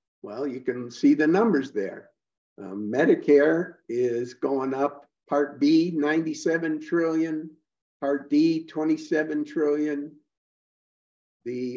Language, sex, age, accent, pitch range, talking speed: English, male, 50-69, American, 140-200 Hz, 105 wpm